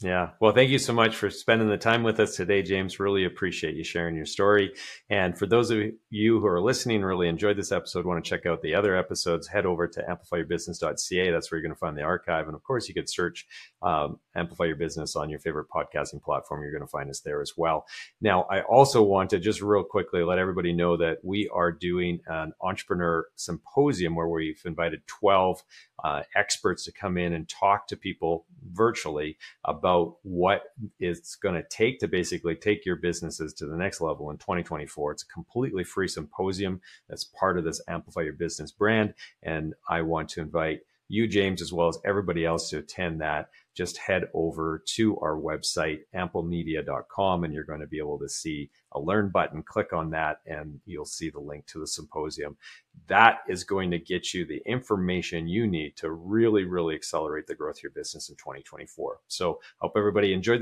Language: English